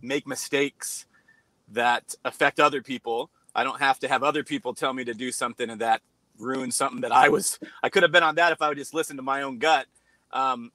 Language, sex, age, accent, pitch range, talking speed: English, male, 30-49, American, 125-150 Hz, 230 wpm